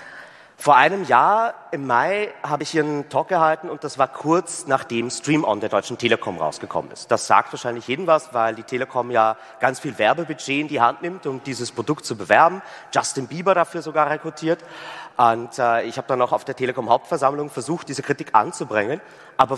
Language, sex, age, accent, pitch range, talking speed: English, male, 30-49, German, 120-160 Hz, 195 wpm